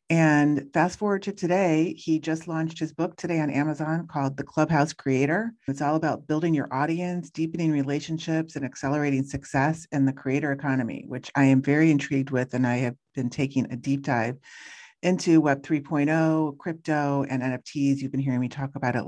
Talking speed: 185 wpm